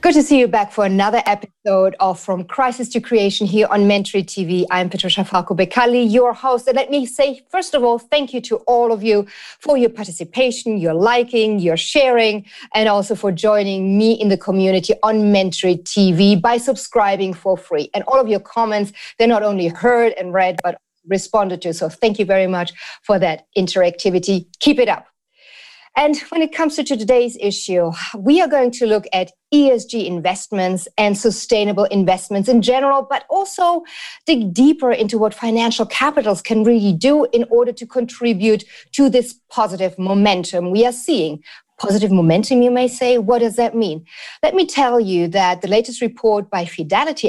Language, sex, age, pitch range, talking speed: English, female, 40-59, 195-245 Hz, 185 wpm